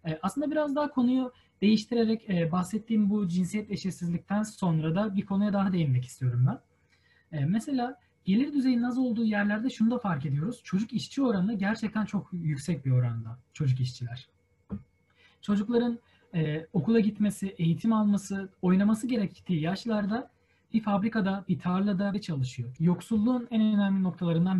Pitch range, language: 160-205 Hz, Turkish